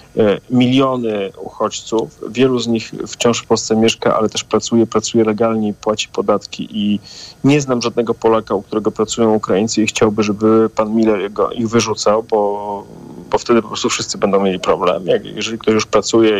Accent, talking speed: native, 170 wpm